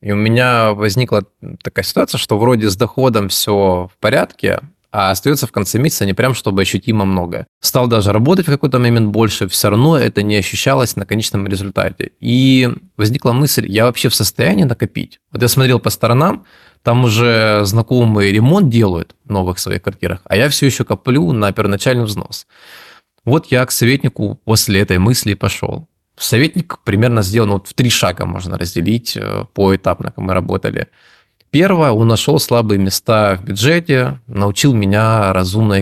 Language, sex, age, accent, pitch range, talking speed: Russian, male, 20-39, native, 100-125 Hz, 165 wpm